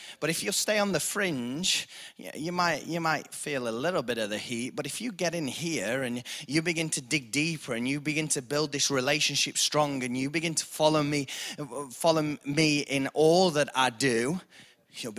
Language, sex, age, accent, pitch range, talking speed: English, male, 20-39, British, 110-150 Hz, 205 wpm